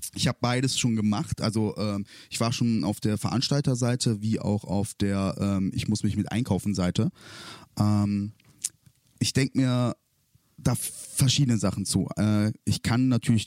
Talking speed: 130 wpm